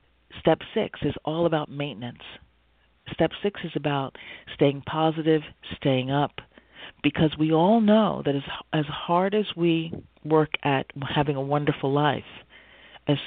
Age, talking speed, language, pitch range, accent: 40-59, 140 wpm, English, 130-165 Hz, American